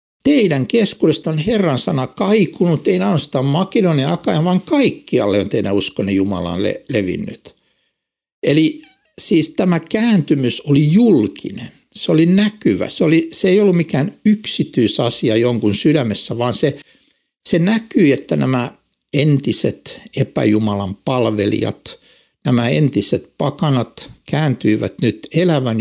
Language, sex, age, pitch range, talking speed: Finnish, male, 60-79, 115-180 Hz, 115 wpm